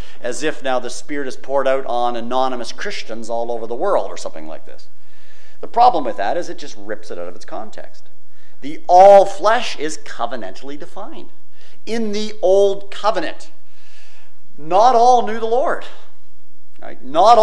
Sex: male